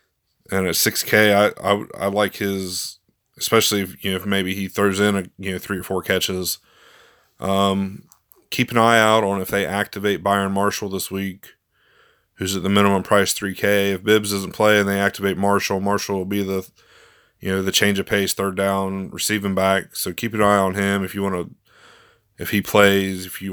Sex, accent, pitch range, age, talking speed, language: male, American, 95-105 Hz, 20-39, 210 wpm, English